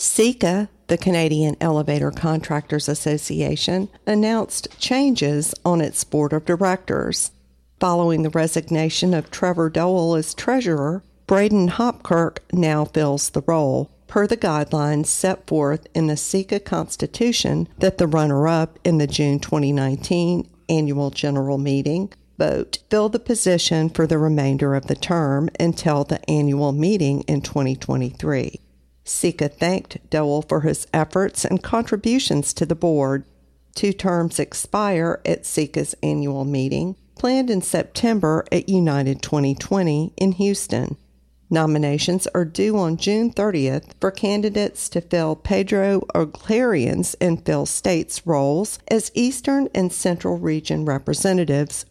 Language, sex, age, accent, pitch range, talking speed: English, female, 50-69, American, 145-190 Hz, 130 wpm